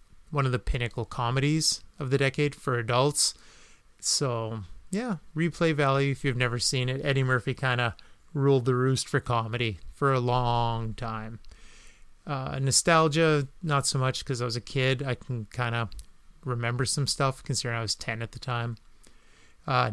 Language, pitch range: English, 115-140 Hz